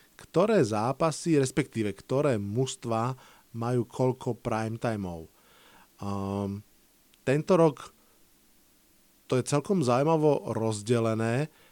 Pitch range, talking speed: 110-130 Hz, 80 wpm